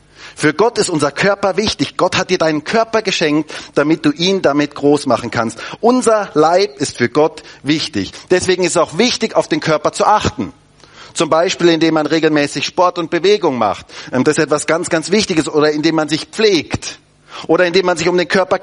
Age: 40-59